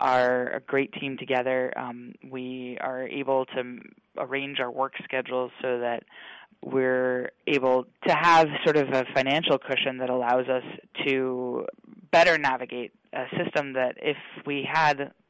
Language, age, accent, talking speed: English, 20-39, American, 145 wpm